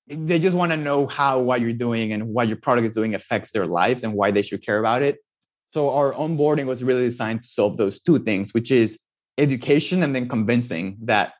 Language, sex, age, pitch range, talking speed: English, male, 20-39, 110-145 Hz, 225 wpm